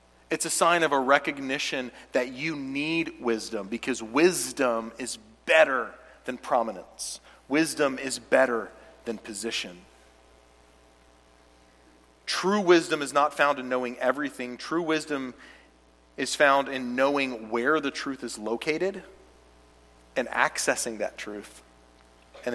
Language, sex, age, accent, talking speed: English, male, 40-59, American, 120 wpm